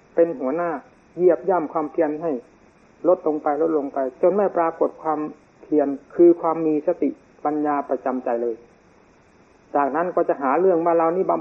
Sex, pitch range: male, 150-175 Hz